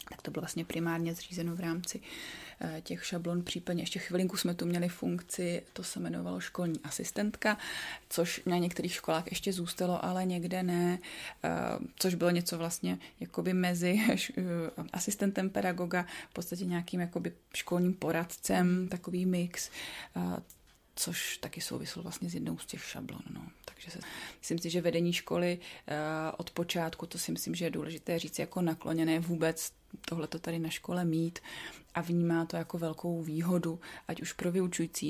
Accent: native